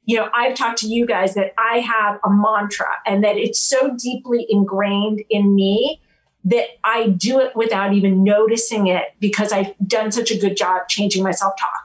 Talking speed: 190 wpm